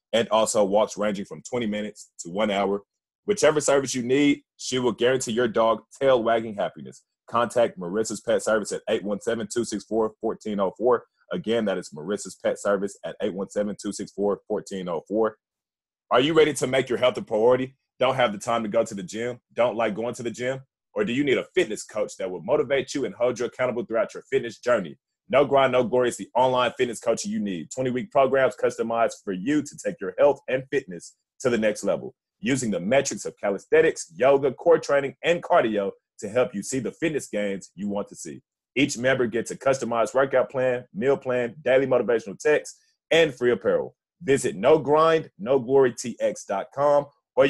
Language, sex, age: English, male, 30-49